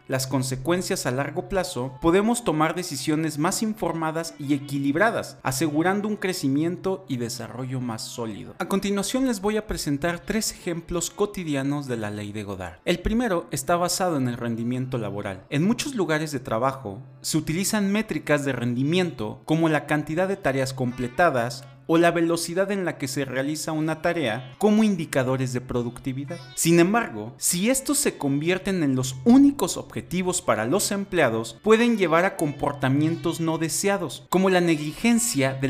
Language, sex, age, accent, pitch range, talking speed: Spanish, male, 40-59, Mexican, 135-185 Hz, 160 wpm